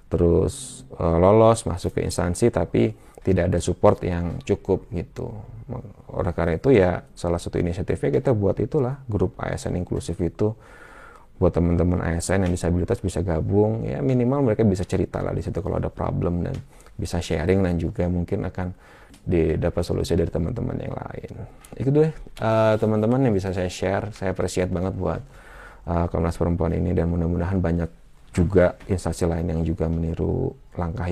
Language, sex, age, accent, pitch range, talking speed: Indonesian, male, 20-39, native, 85-100 Hz, 160 wpm